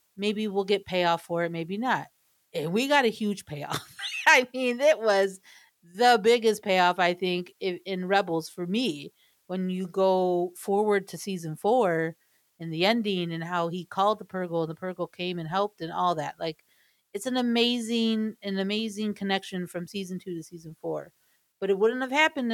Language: English